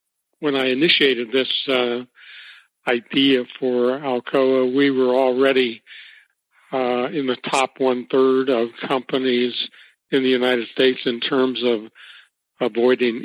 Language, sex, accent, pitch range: English, male, American, 125-135 Hz